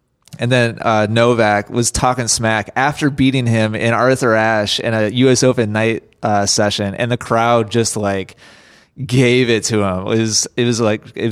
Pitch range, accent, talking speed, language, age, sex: 100-125 Hz, American, 185 wpm, English, 30-49, male